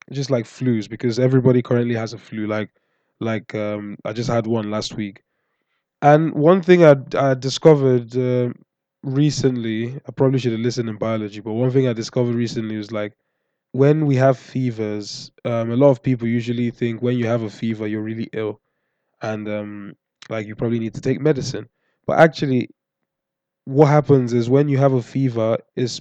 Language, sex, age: English, male, 20-39